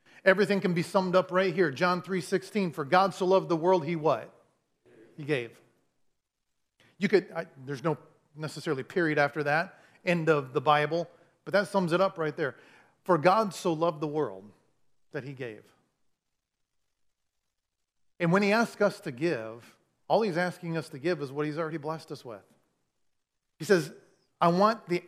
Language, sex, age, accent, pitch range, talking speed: English, male, 40-59, American, 160-190 Hz, 175 wpm